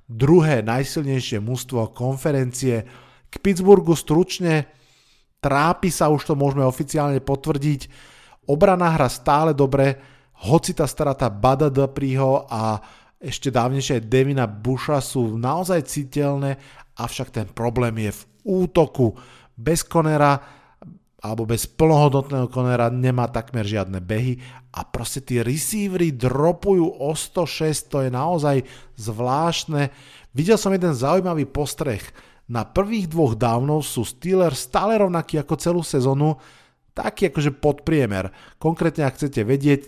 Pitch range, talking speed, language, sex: 120-155 Hz, 120 wpm, Slovak, male